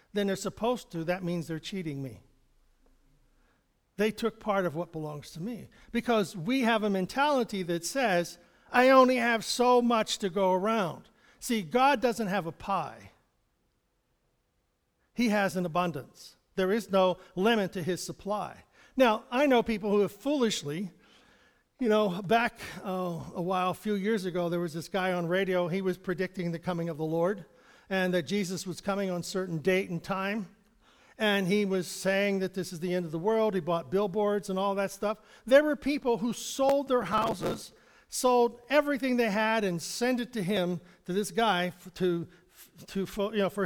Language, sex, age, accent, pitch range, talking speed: English, male, 50-69, American, 185-235 Hz, 185 wpm